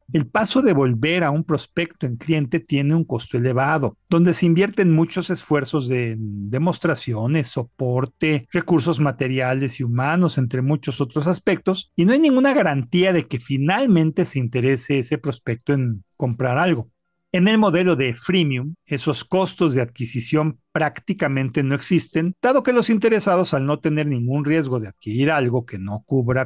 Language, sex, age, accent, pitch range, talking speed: Spanish, male, 50-69, Mexican, 135-175 Hz, 160 wpm